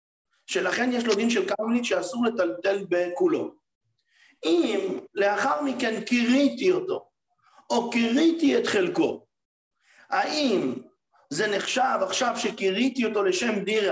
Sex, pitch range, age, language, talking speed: male, 185-285 Hz, 50-69, English, 110 wpm